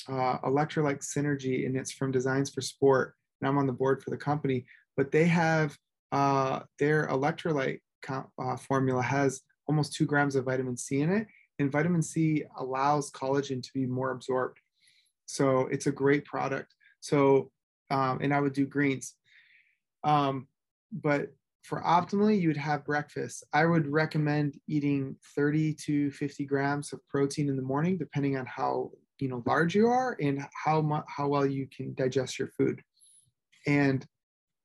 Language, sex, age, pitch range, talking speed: English, male, 20-39, 135-155 Hz, 165 wpm